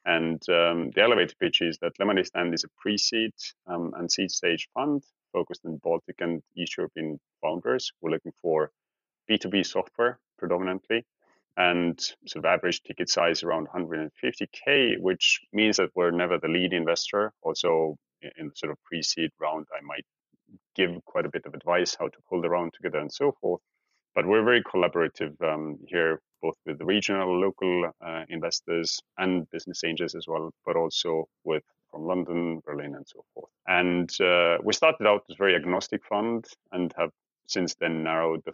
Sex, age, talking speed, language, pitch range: male, 30-49, 175 wpm, English, 85-95 Hz